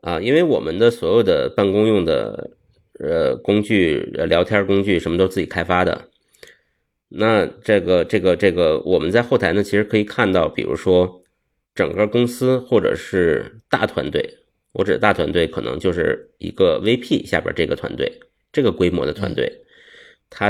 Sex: male